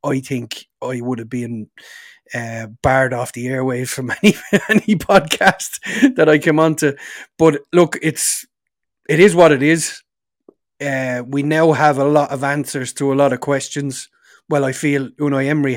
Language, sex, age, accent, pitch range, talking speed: English, male, 30-49, Irish, 135-160 Hz, 175 wpm